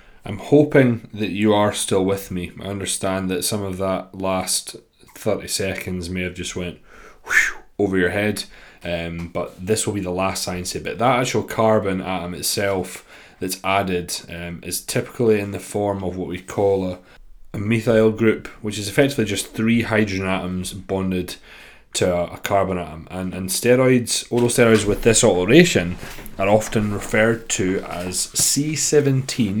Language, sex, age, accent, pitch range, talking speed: English, male, 20-39, British, 90-110 Hz, 170 wpm